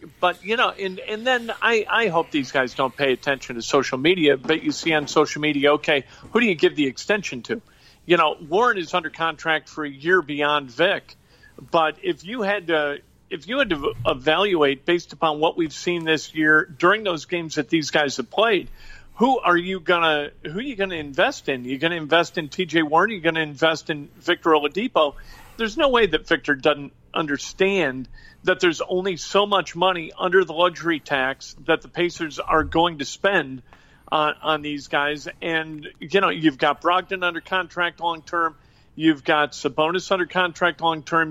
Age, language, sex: 50-69, English, male